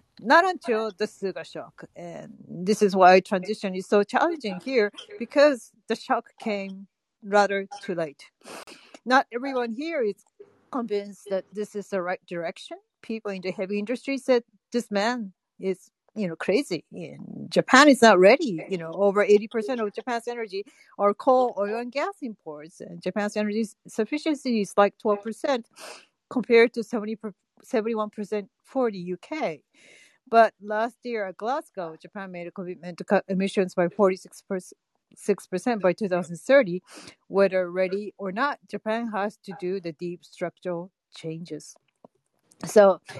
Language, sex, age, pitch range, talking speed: English, female, 40-59, 190-240 Hz, 145 wpm